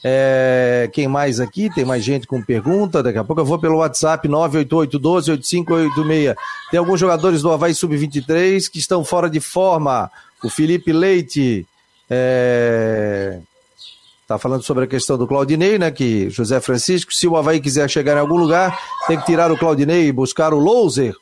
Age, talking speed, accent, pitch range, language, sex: 40-59, 170 wpm, Brazilian, 130-170 Hz, Portuguese, male